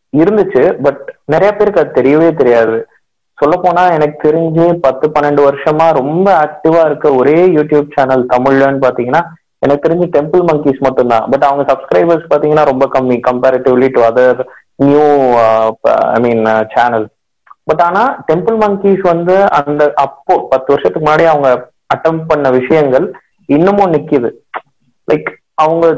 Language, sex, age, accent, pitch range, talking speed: Tamil, male, 30-49, native, 130-160 Hz, 135 wpm